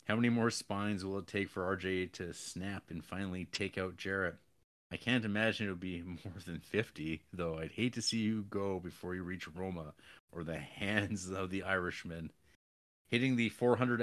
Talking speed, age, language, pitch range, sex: 190 wpm, 30-49, English, 90-115 Hz, male